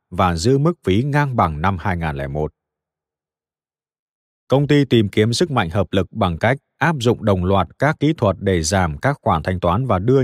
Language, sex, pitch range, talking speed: Vietnamese, male, 90-130 Hz, 195 wpm